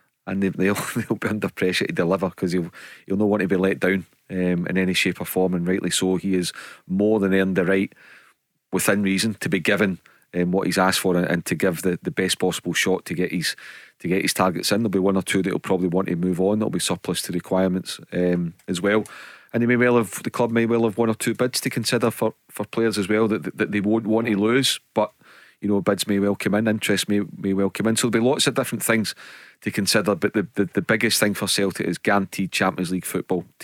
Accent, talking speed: British, 255 wpm